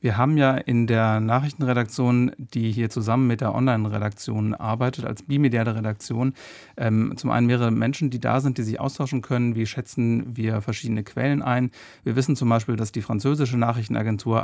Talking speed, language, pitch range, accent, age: 175 wpm, German, 115-130 Hz, German, 40-59